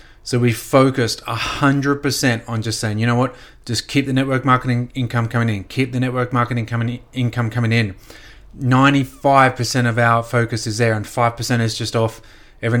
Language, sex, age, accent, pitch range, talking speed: English, male, 30-49, Australian, 115-130 Hz, 175 wpm